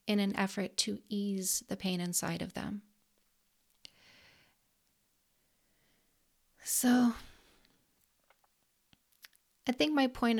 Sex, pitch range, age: female, 195-230 Hz, 40-59